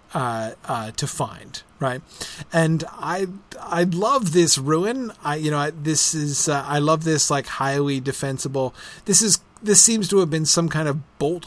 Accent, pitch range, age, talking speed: American, 130-155 Hz, 30-49, 185 wpm